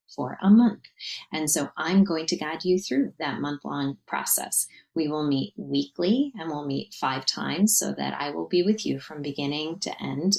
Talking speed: 195 wpm